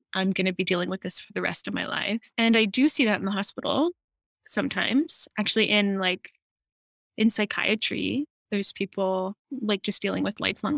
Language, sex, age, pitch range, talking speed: English, female, 20-39, 195-220 Hz, 185 wpm